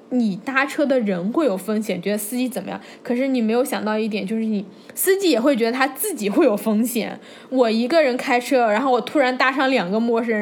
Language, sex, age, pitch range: Chinese, female, 10-29, 205-255 Hz